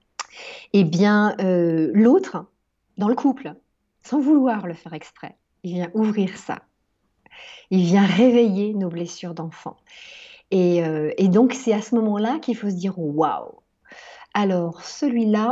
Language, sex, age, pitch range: French, female, 40-59, 180-220 Hz